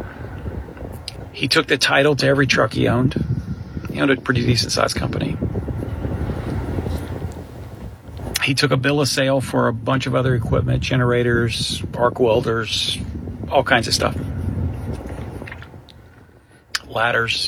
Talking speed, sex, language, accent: 125 wpm, male, English, American